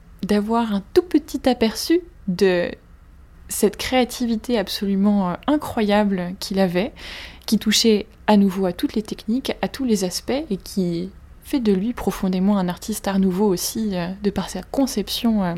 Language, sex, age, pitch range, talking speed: French, female, 20-39, 190-220 Hz, 150 wpm